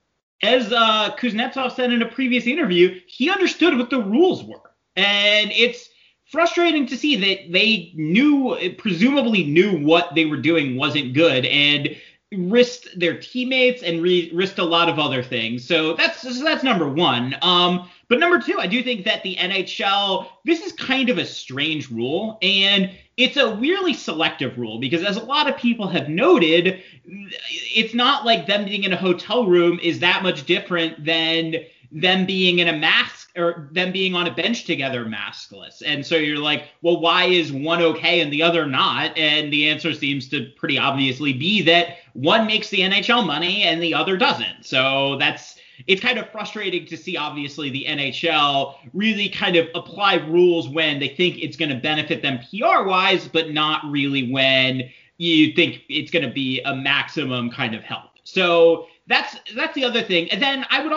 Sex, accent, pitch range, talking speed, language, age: male, American, 150-220 Hz, 185 wpm, English, 30-49